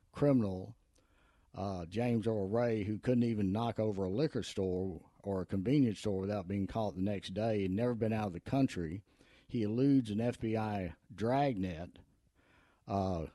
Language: English